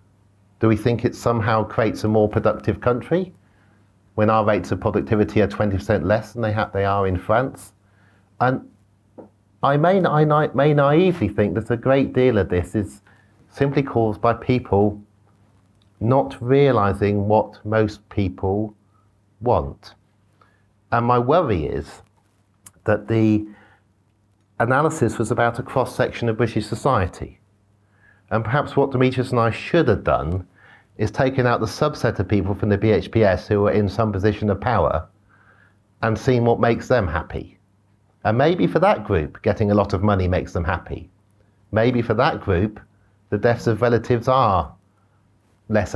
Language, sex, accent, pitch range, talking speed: English, male, British, 100-115 Hz, 150 wpm